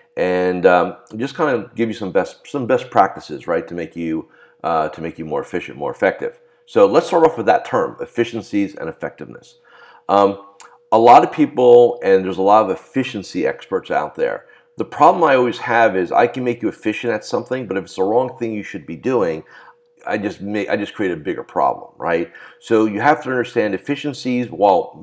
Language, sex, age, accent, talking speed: English, male, 50-69, American, 210 wpm